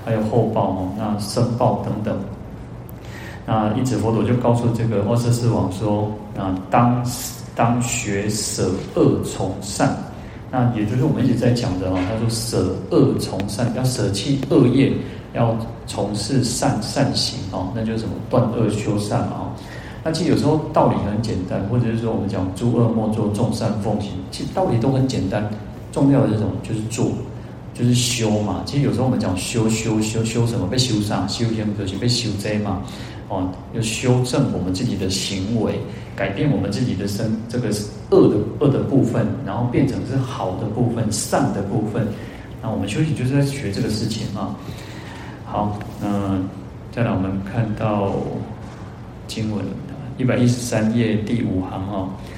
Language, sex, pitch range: Chinese, male, 105-120 Hz